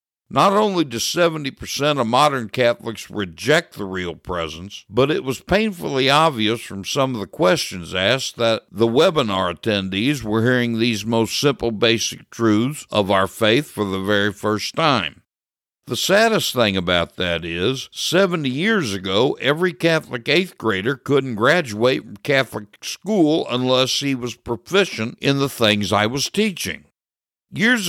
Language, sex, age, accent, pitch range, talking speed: English, male, 60-79, American, 100-135 Hz, 150 wpm